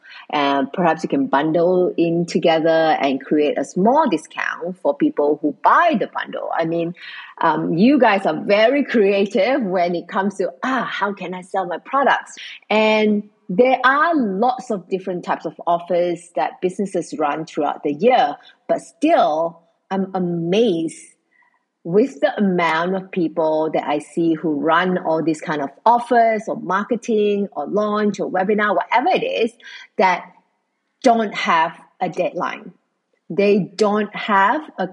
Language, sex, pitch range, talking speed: English, female, 170-230 Hz, 155 wpm